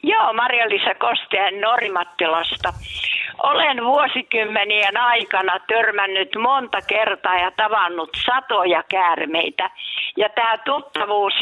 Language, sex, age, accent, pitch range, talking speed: Finnish, female, 60-79, native, 190-255 Hz, 90 wpm